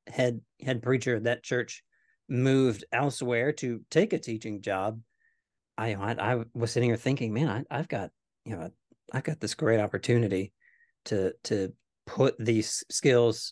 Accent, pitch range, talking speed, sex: American, 115-140 Hz, 155 wpm, male